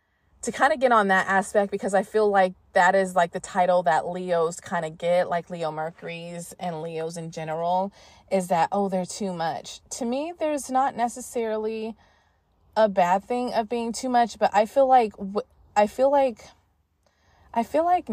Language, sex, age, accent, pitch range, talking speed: English, female, 20-39, American, 175-230 Hz, 185 wpm